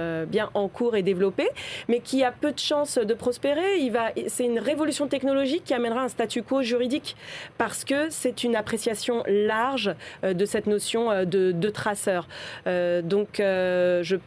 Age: 30-49